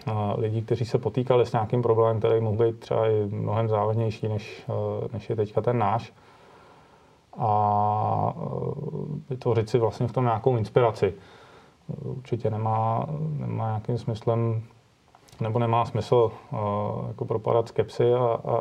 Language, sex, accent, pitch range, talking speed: Czech, male, native, 110-120 Hz, 135 wpm